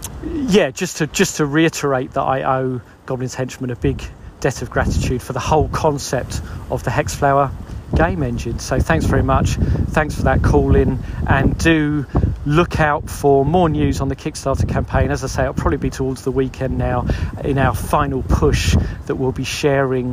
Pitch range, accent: 115-140 Hz, British